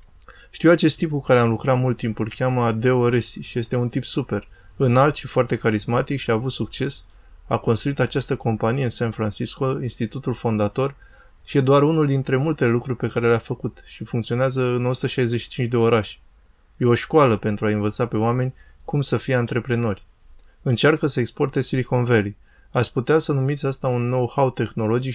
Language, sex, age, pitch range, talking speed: Romanian, male, 20-39, 110-130 Hz, 185 wpm